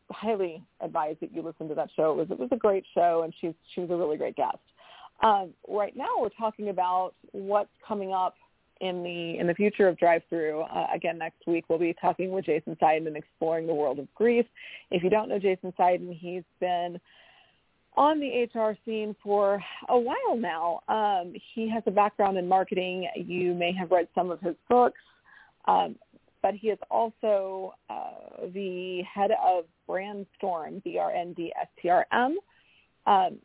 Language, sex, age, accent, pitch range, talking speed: English, female, 40-59, American, 175-215 Hz, 190 wpm